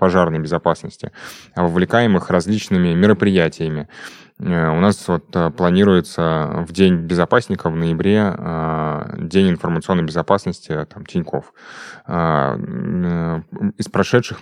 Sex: male